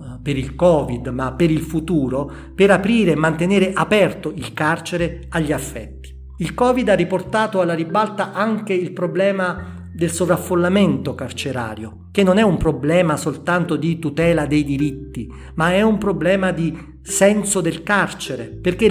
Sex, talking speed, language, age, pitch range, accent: male, 150 wpm, Italian, 40-59, 145-185 Hz, native